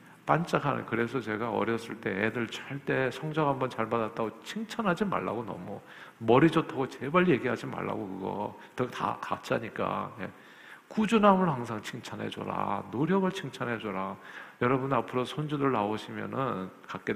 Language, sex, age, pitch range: Korean, male, 50-69, 120-185 Hz